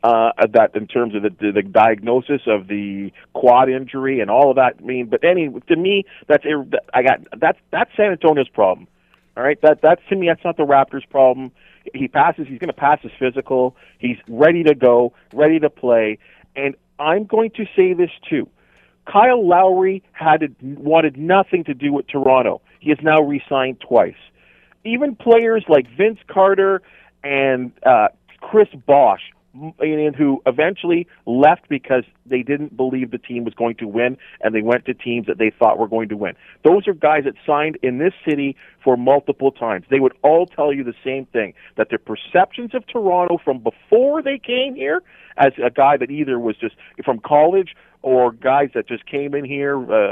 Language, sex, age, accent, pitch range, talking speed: English, male, 40-59, American, 125-170 Hz, 190 wpm